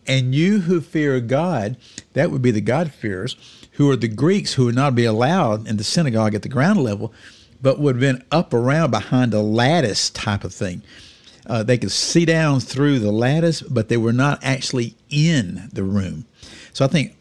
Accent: American